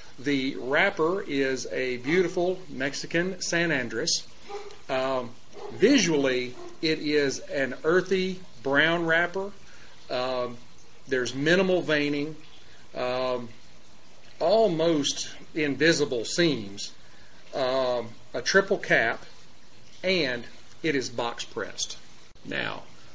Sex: male